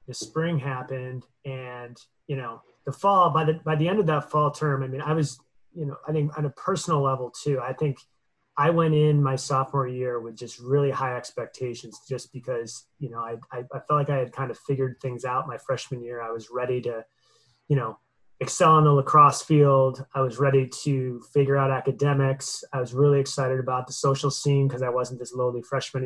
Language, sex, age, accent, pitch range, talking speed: English, male, 30-49, American, 125-145 Hz, 215 wpm